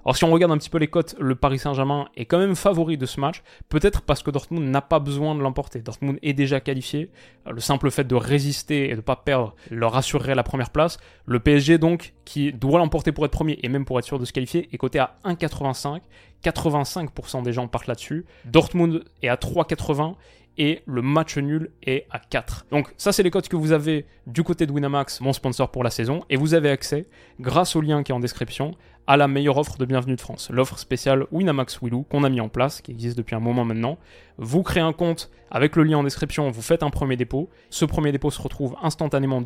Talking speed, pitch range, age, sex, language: 235 wpm, 130-160 Hz, 20-39, male, French